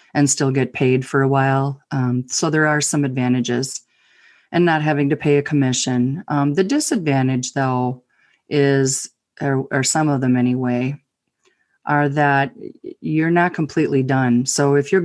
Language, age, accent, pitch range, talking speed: English, 40-59, American, 135-150 Hz, 160 wpm